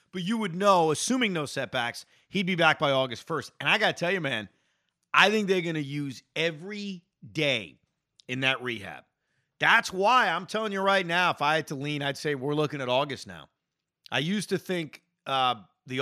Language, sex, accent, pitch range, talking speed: English, male, American, 135-195 Hz, 210 wpm